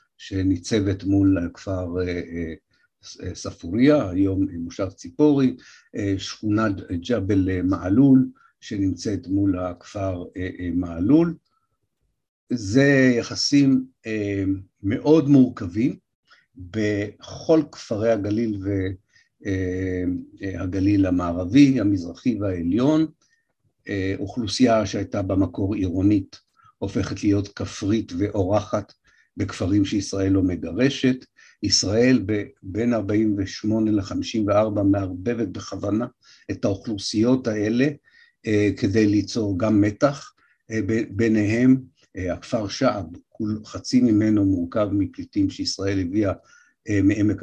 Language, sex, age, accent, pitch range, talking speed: Hebrew, male, 50-69, native, 95-125 Hz, 75 wpm